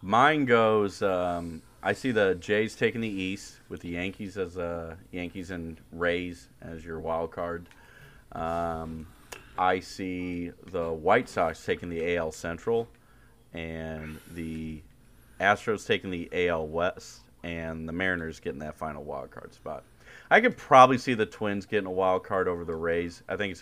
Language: English